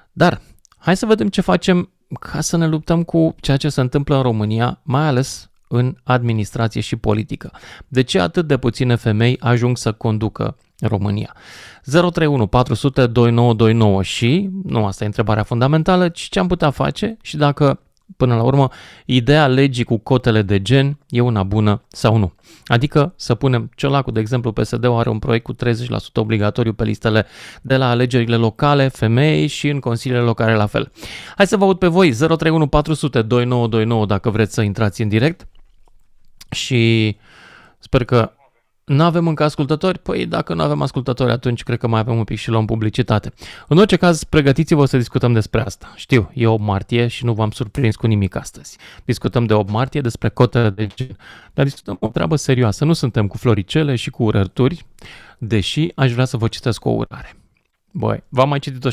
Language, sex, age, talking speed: Romanian, male, 30-49, 180 wpm